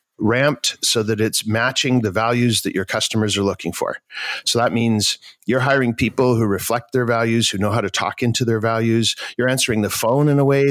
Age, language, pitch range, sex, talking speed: 50-69, English, 110-155 Hz, male, 215 wpm